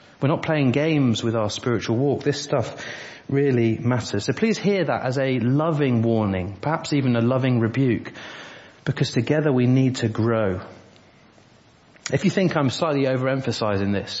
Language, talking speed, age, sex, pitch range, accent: English, 160 wpm, 30-49, male, 110-145 Hz, British